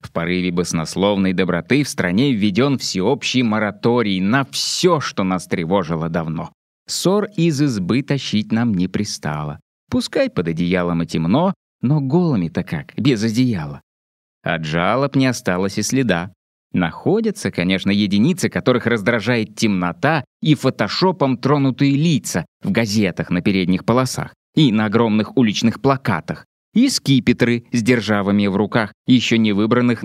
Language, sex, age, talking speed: Russian, male, 20-39, 135 wpm